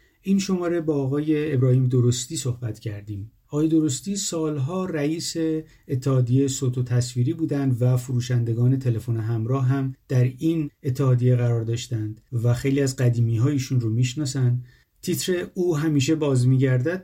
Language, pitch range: Persian, 120-155 Hz